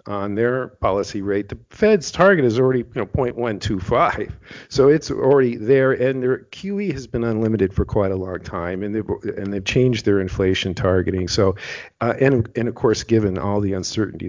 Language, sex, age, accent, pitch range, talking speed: English, male, 50-69, American, 95-120 Hz, 175 wpm